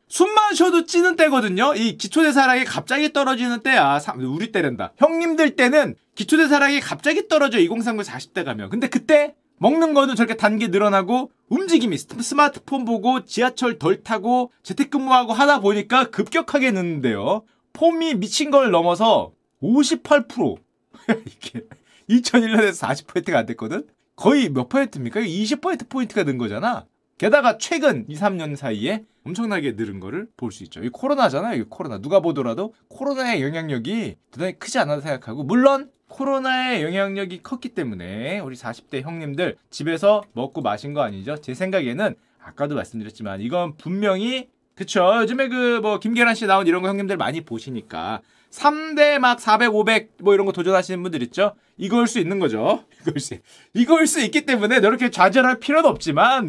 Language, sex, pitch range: Korean, male, 185-275 Hz